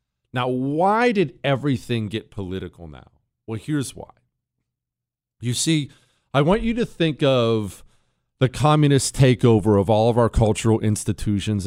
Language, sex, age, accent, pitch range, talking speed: English, male, 40-59, American, 115-165 Hz, 140 wpm